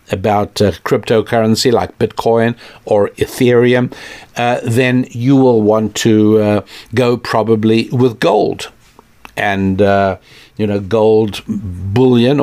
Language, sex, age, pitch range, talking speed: English, male, 60-79, 110-130 Hz, 115 wpm